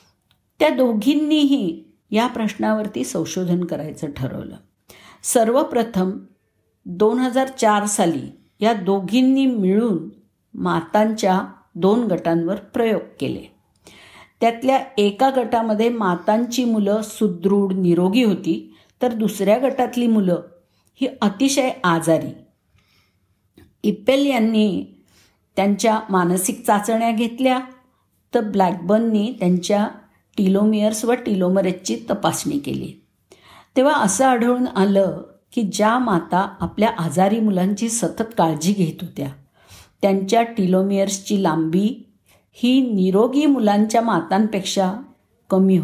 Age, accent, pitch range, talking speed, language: 50-69, native, 185-235 Hz, 95 wpm, Marathi